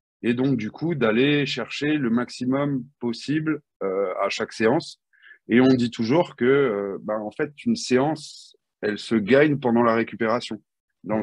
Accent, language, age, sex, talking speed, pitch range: French, French, 30-49, male, 165 wpm, 110-140 Hz